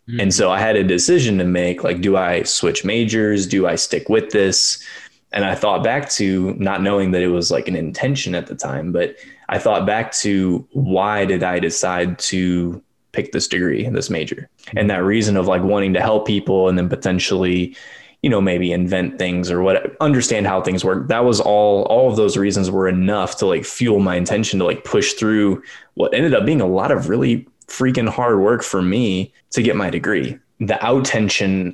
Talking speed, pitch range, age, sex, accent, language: 210 wpm, 90-105 Hz, 20-39, male, American, English